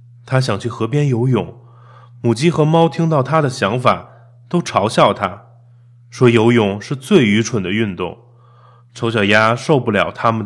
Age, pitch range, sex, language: 20-39, 115-130 Hz, male, Chinese